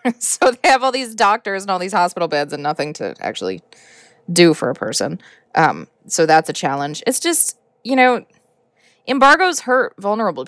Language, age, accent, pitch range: English, 20-39, American, 170-240 Hz